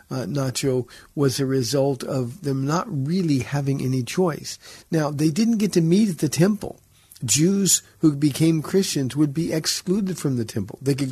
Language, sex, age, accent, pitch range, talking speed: English, male, 50-69, American, 125-155 Hz, 180 wpm